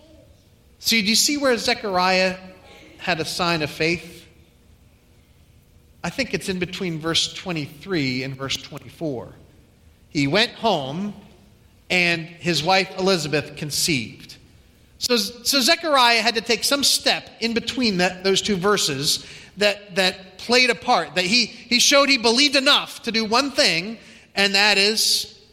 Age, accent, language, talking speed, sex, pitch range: 40-59, American, English, 145 wpm, male, 160-215 Hz